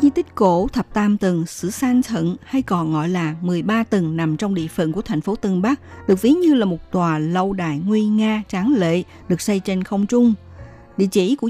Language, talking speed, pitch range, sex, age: Vietnamese, 230 wpm, 165-225 Hz, female, 60-79